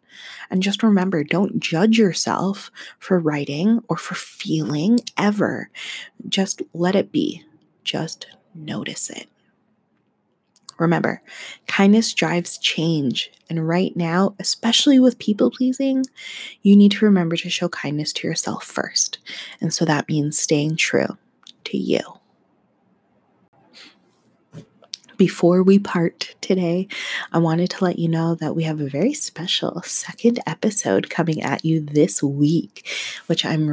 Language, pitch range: English, 155-195 Hz